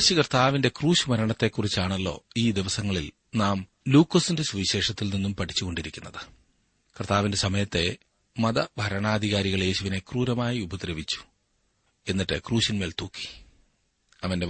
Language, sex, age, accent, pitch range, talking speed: Malayalam, male, 40-59, native, 95-120 Hz, 85 wpm